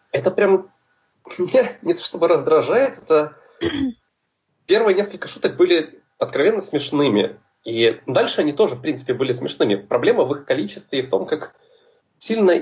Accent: native